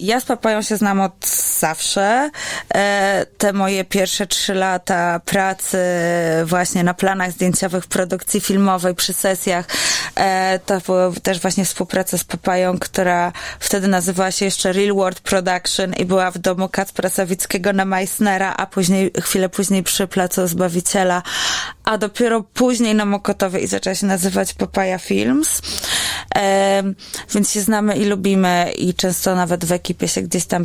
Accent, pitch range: native, 185-200 Hz